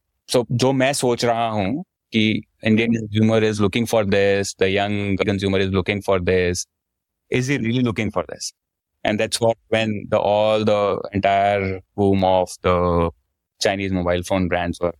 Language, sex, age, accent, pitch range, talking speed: English, male, 20-39, Indian, 85-110 Hz, 155 wpm